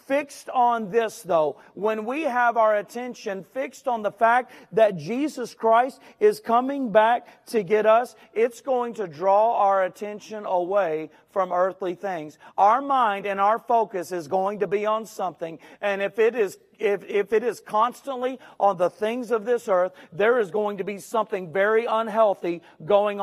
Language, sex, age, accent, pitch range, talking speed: English, male, 40-59, American, 200-240 Hz, 175 wpm